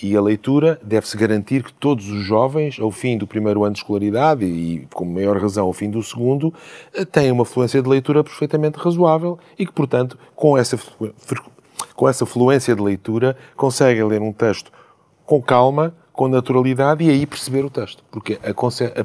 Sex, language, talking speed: male, Portuguese, 175 wpm